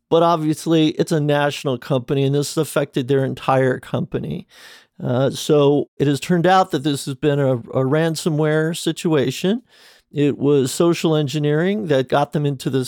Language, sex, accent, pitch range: English, male, American, 135-165 Hz